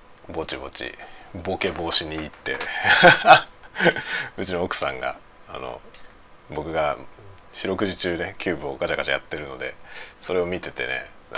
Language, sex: Japanese, male